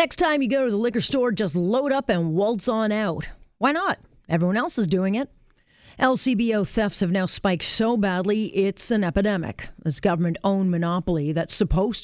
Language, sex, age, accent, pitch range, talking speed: English, female, 40-59, American, 165-230 Hz, 185 wpm